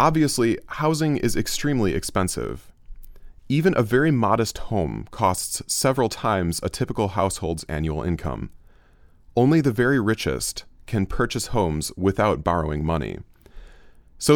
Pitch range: 90-135 Hz